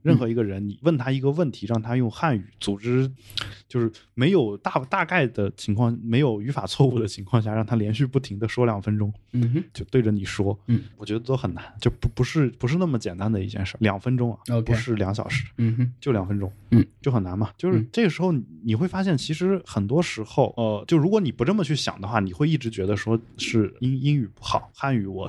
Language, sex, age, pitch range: Chinese, male, 20-39, 105-135 Hz